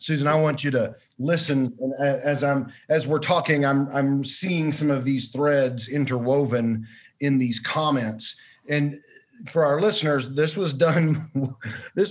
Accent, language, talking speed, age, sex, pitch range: American, English, 150 wpm, 40-59, male, 120-150 Hz